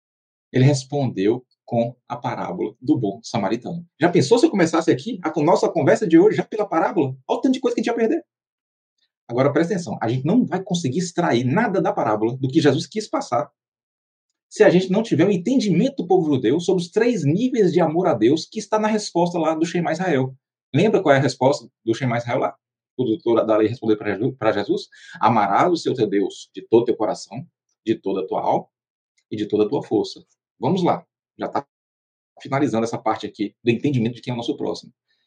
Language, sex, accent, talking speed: Portuguese, male, Brazilian, 215 wpm